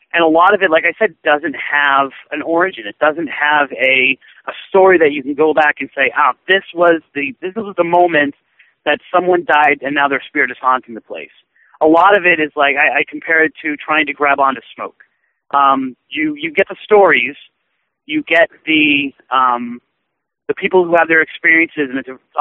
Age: 40-59